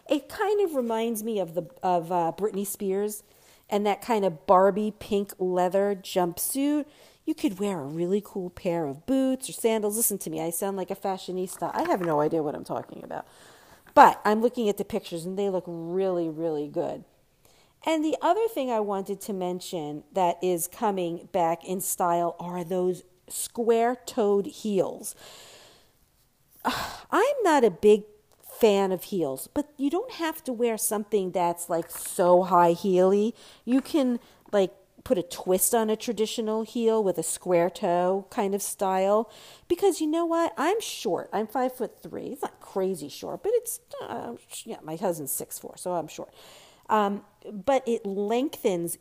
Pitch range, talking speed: 180-230 Hz, 175 wpm